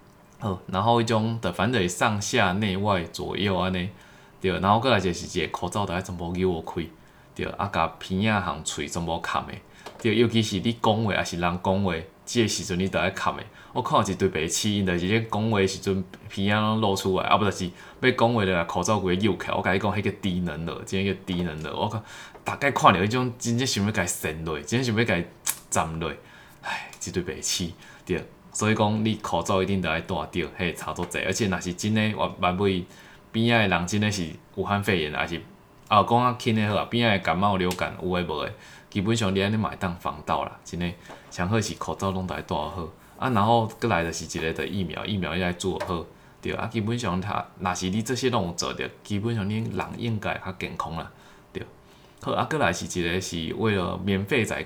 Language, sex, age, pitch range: Chinese, male, 20-39, 90-110 Hz